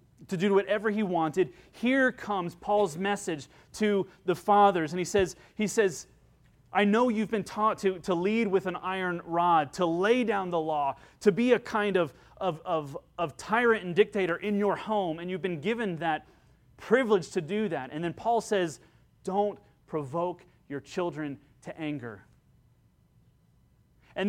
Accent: American